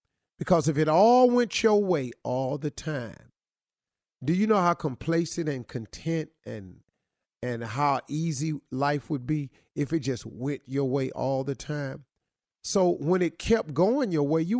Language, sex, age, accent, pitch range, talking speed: English, male, 40-59, American, 120-170 Hz, 170 wpm